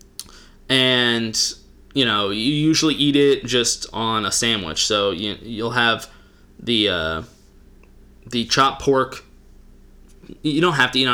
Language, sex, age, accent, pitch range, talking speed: English, male, 20-39, American, 110-140 Hz, 135 wpm